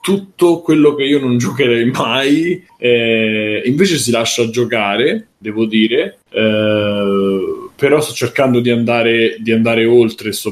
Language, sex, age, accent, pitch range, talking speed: Italian, male, 20-39, native, 110-130 Hz, 135 wpm